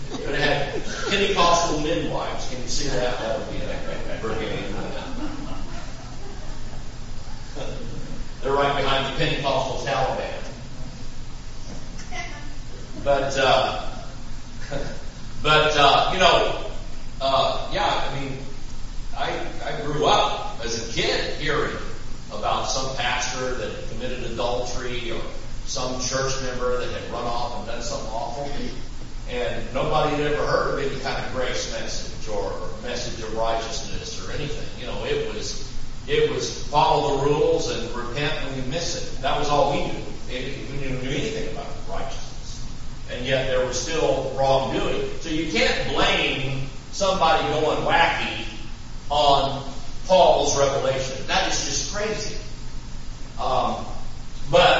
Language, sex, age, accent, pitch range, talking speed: English, male, 40-59, American, 125-145 Hz, 135 wpm